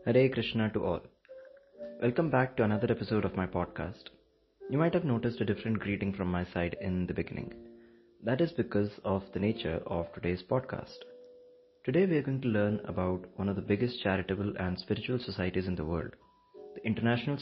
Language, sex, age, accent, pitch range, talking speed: English, male, 30-49, Indian, 95-120 Hz, 185 wpm